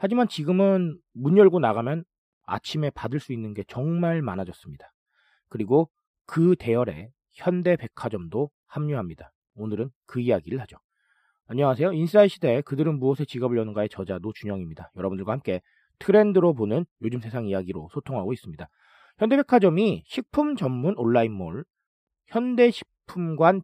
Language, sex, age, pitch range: Korean, male, 40-59, 115-185 Hz